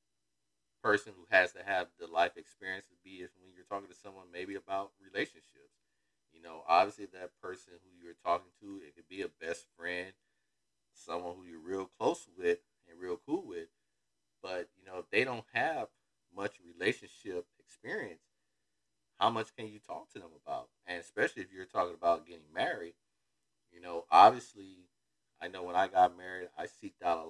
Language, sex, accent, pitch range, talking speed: English, male, American, 75-95 Hz, 180 wpm